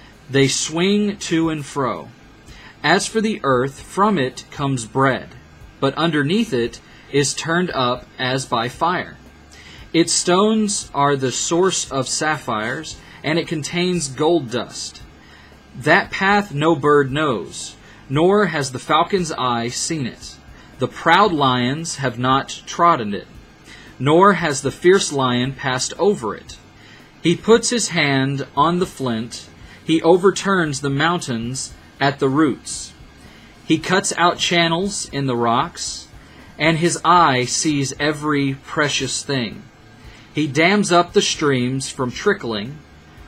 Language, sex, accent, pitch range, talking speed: English, male, American, 125-165 Hz, 135 wpm